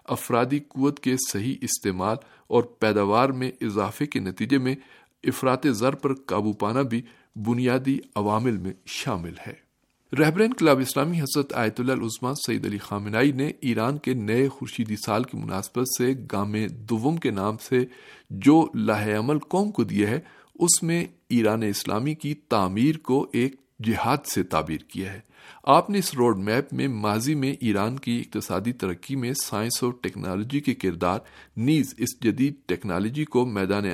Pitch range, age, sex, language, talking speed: 105-140 Hz, 50-69, male, Urdu, 160 wpm